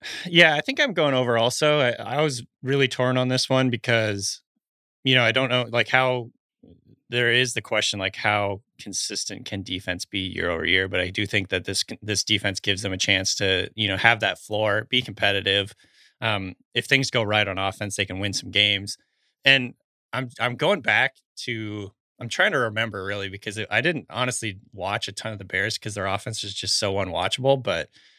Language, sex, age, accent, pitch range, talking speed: English, male, 20-39, American, 100-130 Hz, 210 wpm